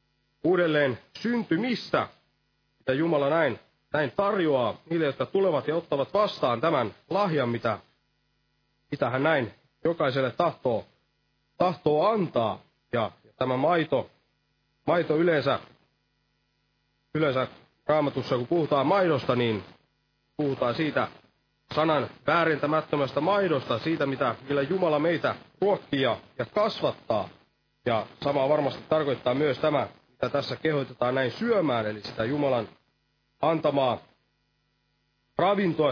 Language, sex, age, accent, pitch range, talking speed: Finnish, male, 30-49, native, 130-170 Hz, 105 wpm